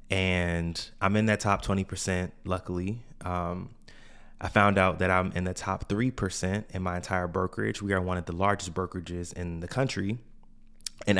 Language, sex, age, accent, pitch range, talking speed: English, male, 20-39, American, 90-105 Hz, 170 wpm